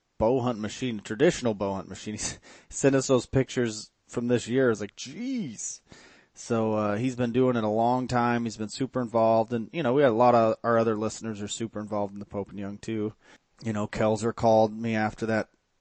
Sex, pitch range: male, 105-120 Hz